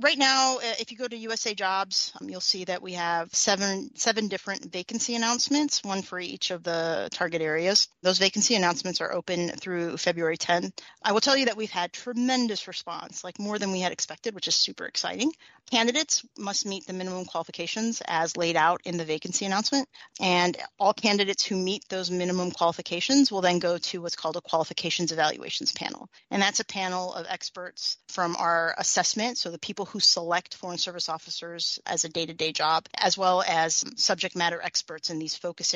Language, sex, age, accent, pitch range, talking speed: English, female, 30-49, American, 170-205 Hz, 190 wpm